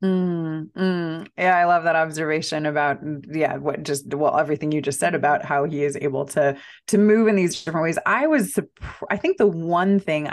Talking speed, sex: 205 wpm, female